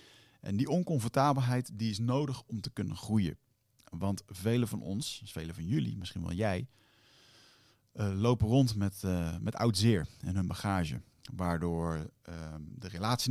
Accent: Dutch